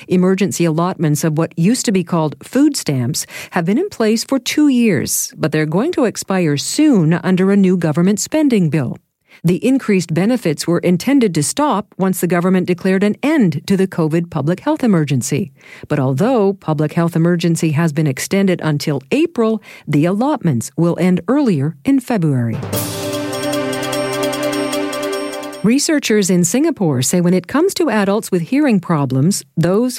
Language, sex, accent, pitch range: English, female, American, 160-220 Hz